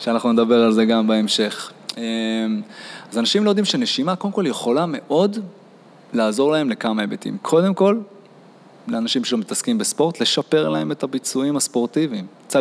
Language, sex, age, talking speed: Hebrew, male, 20-39, 145 wpm